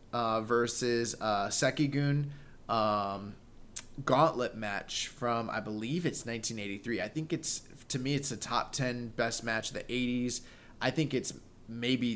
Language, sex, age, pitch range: English, male, 20-39, 110-130 Hz